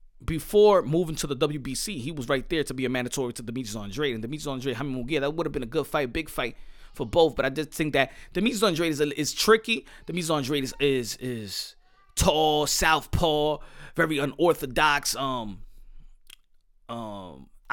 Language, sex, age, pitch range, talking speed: English, male, 30-49, 145-185 Hz, 185 wpm